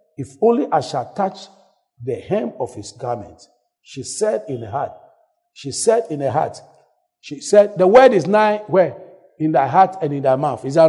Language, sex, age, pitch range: English, male, 50-69, 165-260 Hz